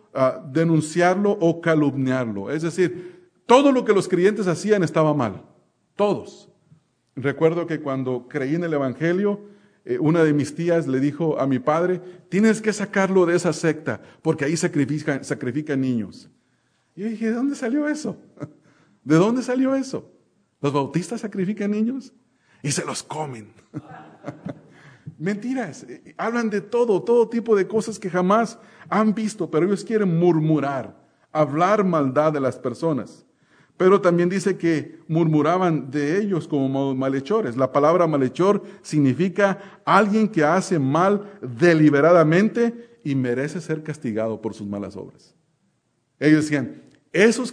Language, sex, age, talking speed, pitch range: English, male, 40-59, 140 wpm, 145-205 Hz